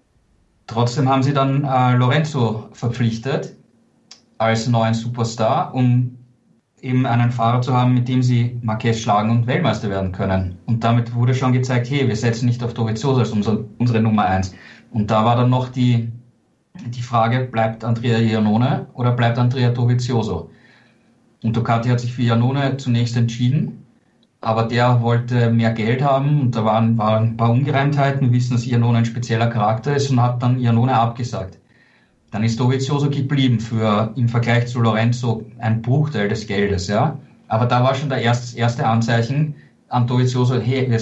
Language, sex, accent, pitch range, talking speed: German, male, German, 115-125 Hz, 170 wpm